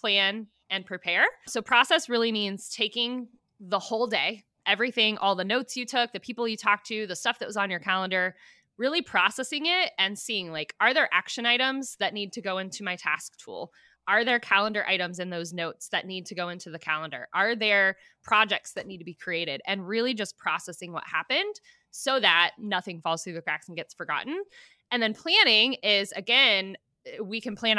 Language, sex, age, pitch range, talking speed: English, female, 20-39, 180-235 Hz, 200 wpm